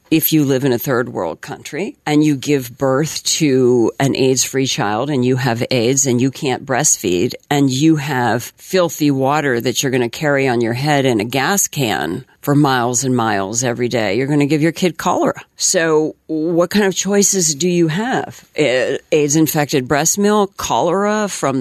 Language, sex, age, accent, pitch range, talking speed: English, female, 50-69, American, 125-150 Hz, 190 wpm